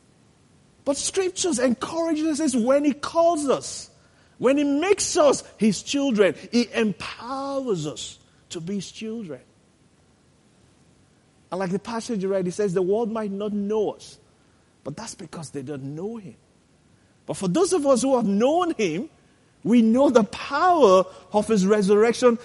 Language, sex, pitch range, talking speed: English, male, 195-265 Hz, 155 wpm